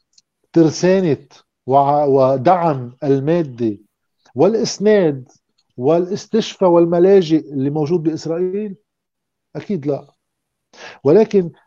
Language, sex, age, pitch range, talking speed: Arabic, male, 50-69, 160-215 Hz, 60 wpm